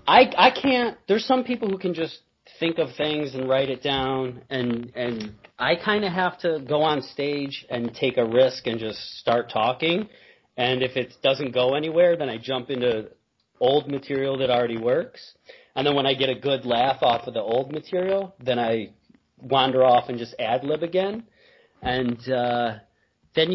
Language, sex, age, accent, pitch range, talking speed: English, male, 40-59, American, 125-175 Hz, 185 wpm